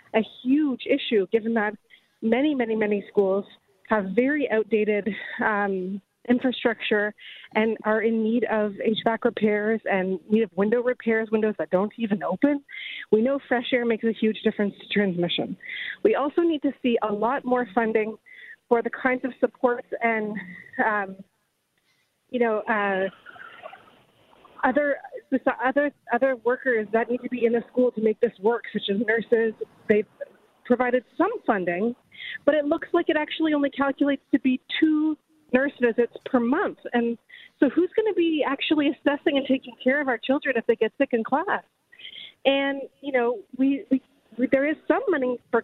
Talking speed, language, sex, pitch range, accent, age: 170 wpm, English, female, 220-285 Hz, American, 30-49